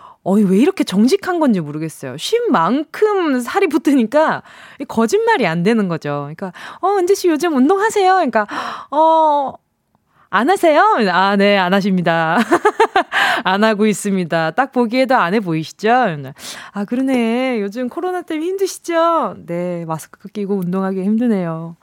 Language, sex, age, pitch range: Korean, female, 20-39, 195-310 Hz